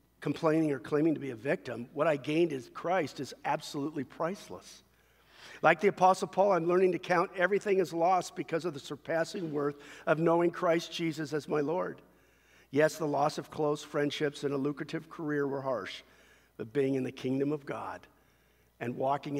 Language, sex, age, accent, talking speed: English, male, 50-69, American, 185 wpm